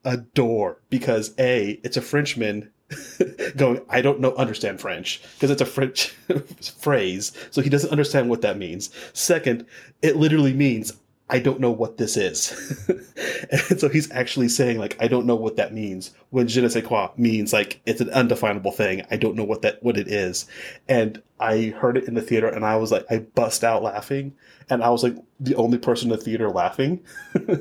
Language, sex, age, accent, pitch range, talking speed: English, male, 30-49, American, 110-140 Hz, 200 wpm